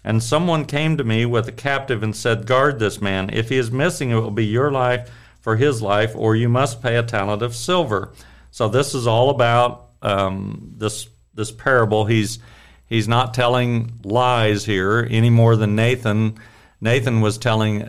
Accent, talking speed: American, 185 wpm